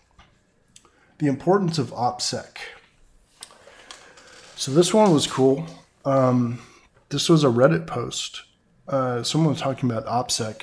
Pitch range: 115-135 Hz